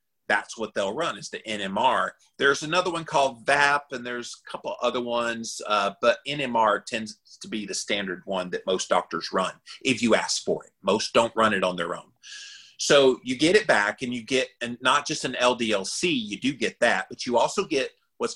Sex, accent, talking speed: male, American, 210 wpm